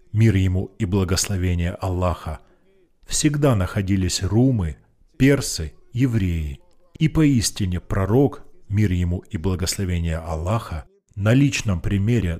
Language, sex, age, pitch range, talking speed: Russian, male, 40-59, 90-130 Hz, 100 wpm